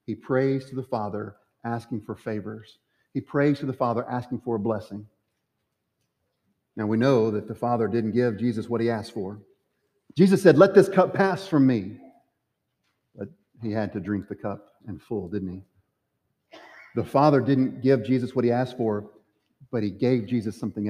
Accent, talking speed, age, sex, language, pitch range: American, 180 wpm, 40-59, male, English, 115-175 Hz